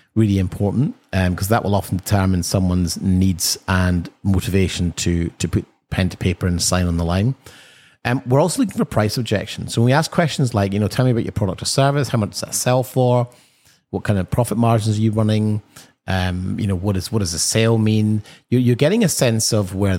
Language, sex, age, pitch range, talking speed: English, male, 30-49, 95-125 Hz, 230 wpm